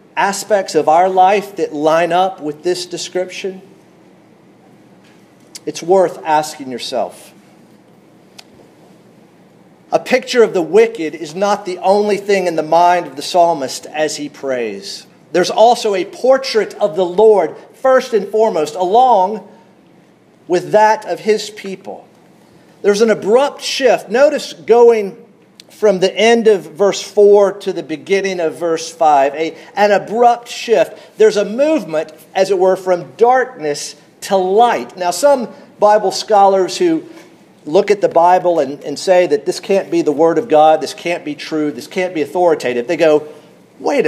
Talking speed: 150 wpm